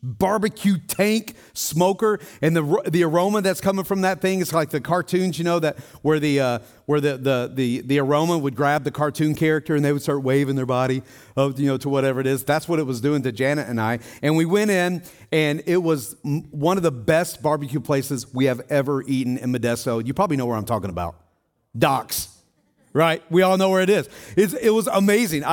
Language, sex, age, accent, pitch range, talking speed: English, male, 40-59, American, 130-170 Hz, 225 wpm